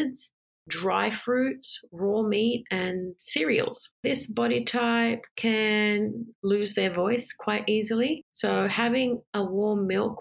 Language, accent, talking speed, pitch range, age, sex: English, Australian, 120 wpm, 190-235 Hz, 30-49, female